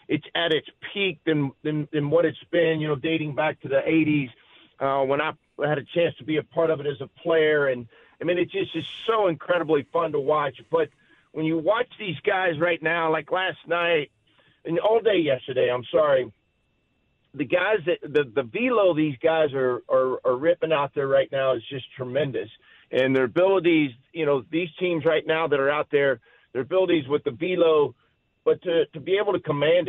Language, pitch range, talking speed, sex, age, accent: English, 145-175 Hz, 210 wpm, male, 50-69, American